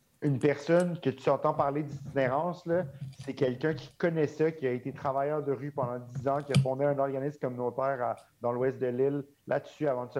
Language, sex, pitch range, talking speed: French, male, 130-150 Hz, 220 wpm